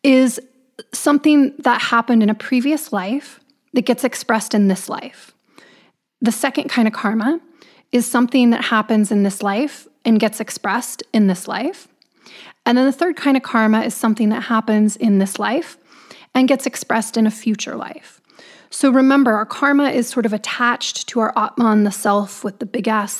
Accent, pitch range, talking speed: American, 220-265 Hz, 180 wpm